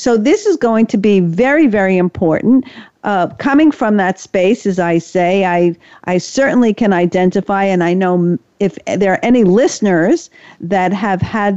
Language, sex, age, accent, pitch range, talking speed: English, female, 50-69, American, 185-230 Hz, 170 wpm